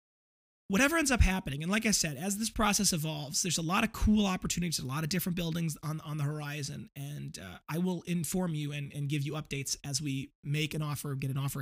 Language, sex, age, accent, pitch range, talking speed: English, male, 30-49, American, 145-180 Hz, 240 wpm